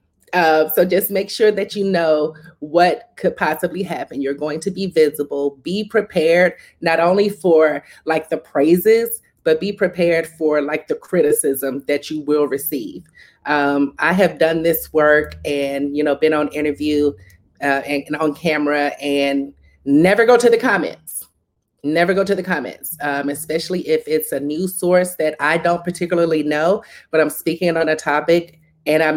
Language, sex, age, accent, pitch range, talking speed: English, female, 30-49, American, 145-180 Hz, 170 wpm